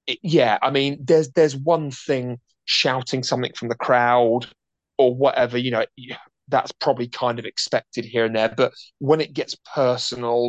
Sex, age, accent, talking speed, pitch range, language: male, 30-49, British, 165 wpm, 120-130 Hz, English